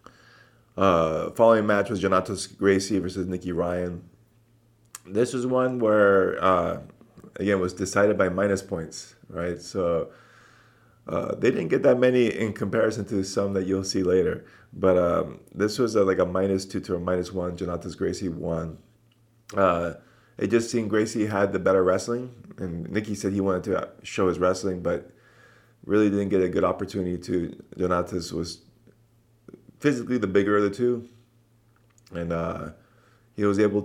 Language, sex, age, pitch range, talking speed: English, male, 30-49, 90-115 Hz, 165 wpm